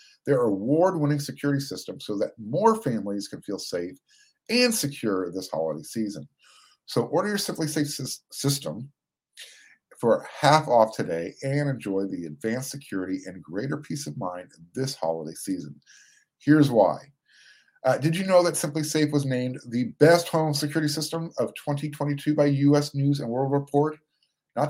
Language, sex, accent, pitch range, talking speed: English, male, American, 125-155 Hz, 160 wpm